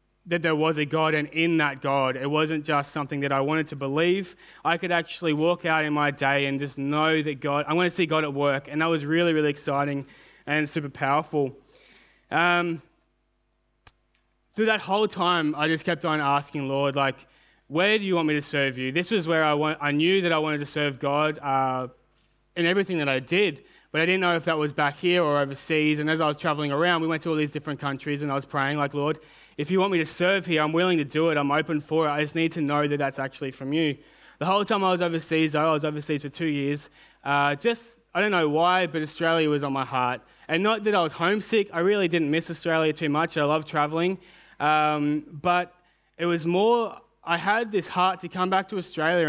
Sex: male